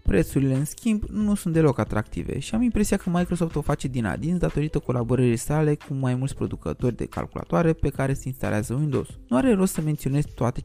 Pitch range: 125-165 Hz